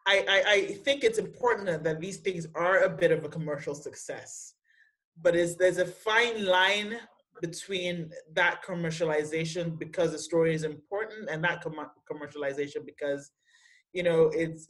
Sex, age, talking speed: male, 20-39, 155 wpm